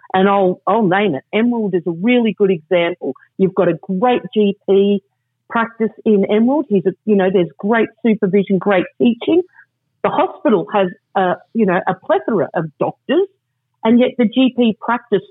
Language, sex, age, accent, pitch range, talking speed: English, female, 50-69, Australian, 195-240 Hz, 170 wpm